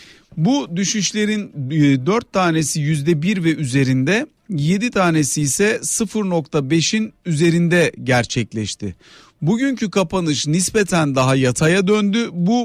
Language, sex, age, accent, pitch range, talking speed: Turkish, male, 50-69, native, 145-200 Hz, 95 wpm